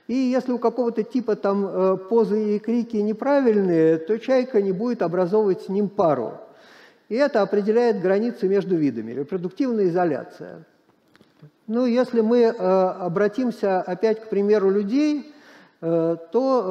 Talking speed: 125 wpm